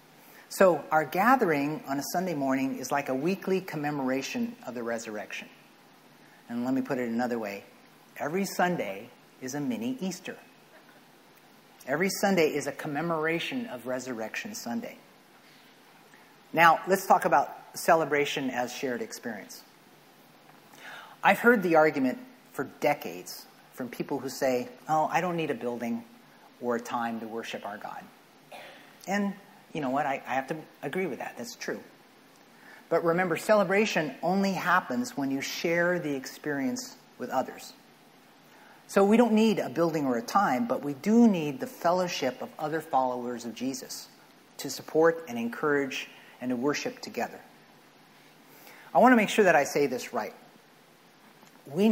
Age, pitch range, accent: 40-59, 130-195 Hz, American